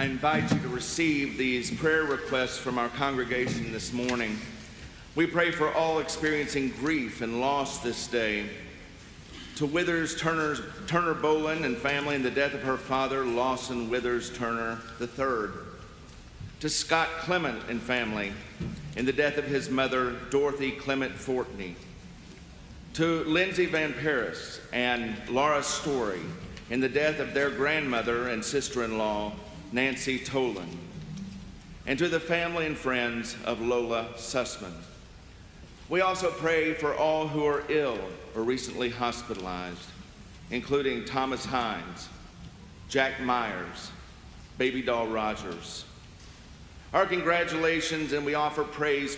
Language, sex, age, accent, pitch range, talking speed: English, male, 50-69, American, 115-150 Hz, 125 wpm